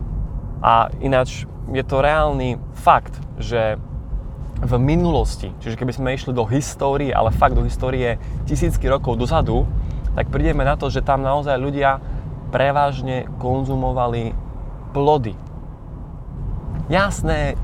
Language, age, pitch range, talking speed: Slovak, 20-39, 120-145 Hz, 115 wpm